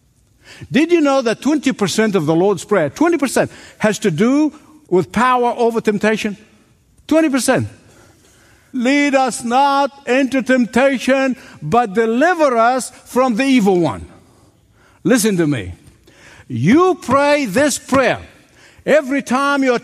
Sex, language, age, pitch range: male, English, 60-79, 185-270 Hz